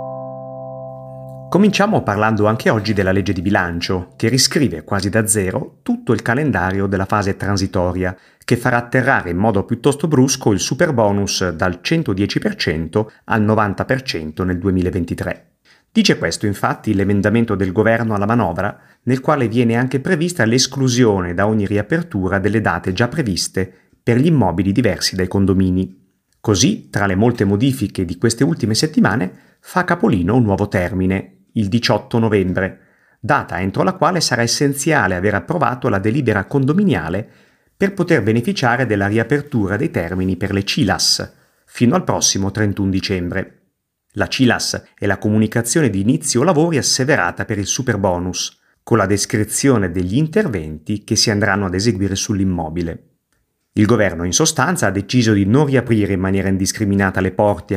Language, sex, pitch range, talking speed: Italian, male, 95-125 Hz, 145 wpm